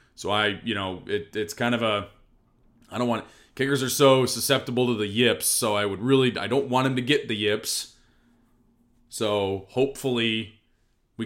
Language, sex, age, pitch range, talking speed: English, male, 30-49, 110-140 Hz, 185 wpm